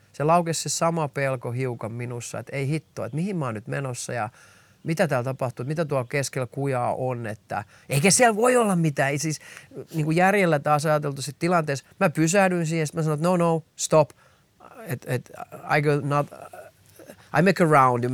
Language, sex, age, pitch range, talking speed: Finnish, male, 30-49, 125-155 Hz, 180 wpm